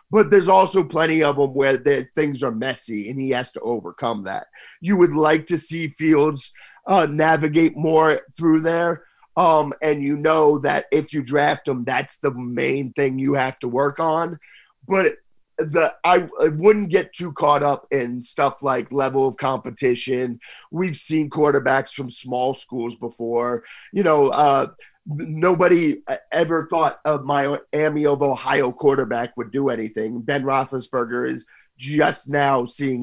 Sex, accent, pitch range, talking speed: male, American, 130-160 Hz, 160 wpm